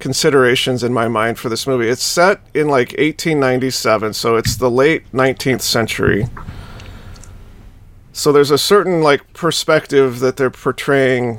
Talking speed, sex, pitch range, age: 140 wpm, male, 115-145 Hz, 40-59